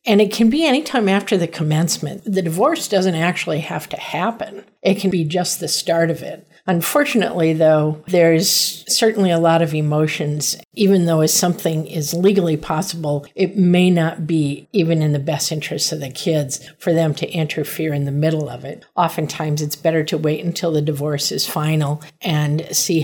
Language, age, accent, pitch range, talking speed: English, 50-69, American, 150-180 Hz, 185 wpm